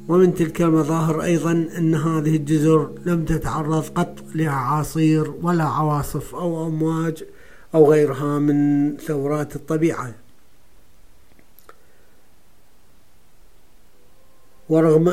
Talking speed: 85 wpm